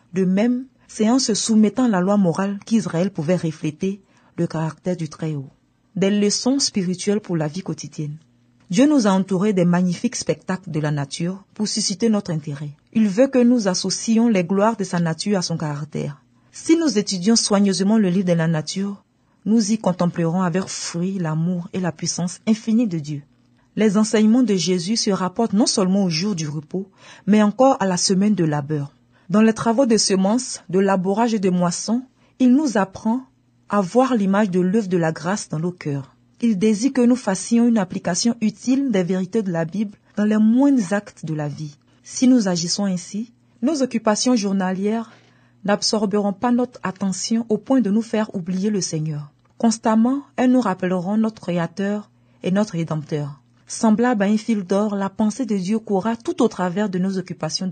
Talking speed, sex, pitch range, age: 185 wpm, female, 170-220 Hz, 40-59